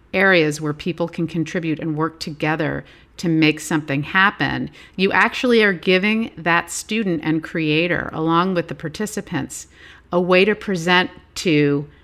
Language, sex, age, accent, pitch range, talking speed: English, female, 50-69, American, 155-205 Hz, 145 wpm